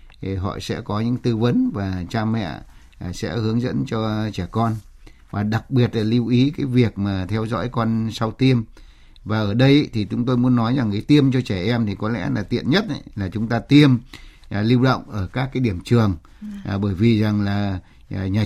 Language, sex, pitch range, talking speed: Vietnamese, male, 105-130 Hz, 210 wpm